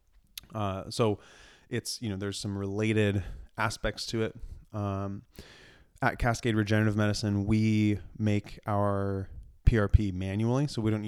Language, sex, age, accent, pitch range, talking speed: English, male, 20-39, American, 95-110 Hz, 130 wpm